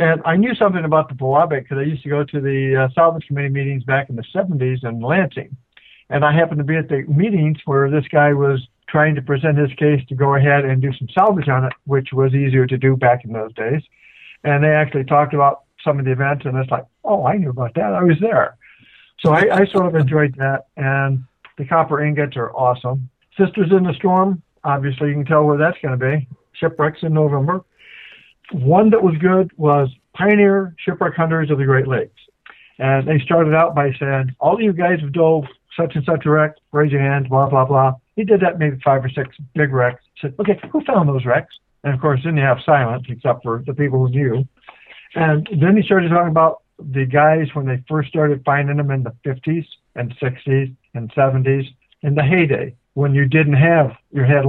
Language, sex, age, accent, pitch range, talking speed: English, male, 60-79, American, 135-160 Hz, 220 wpm